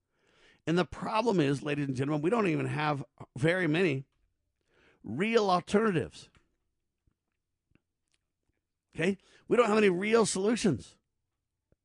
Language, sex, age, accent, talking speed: English, male, 50-69, American, 110 wpm